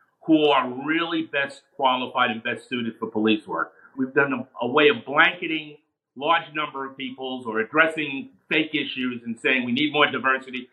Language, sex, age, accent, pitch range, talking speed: English, male, 50-69, American, 130-160 Hz, 180 wpm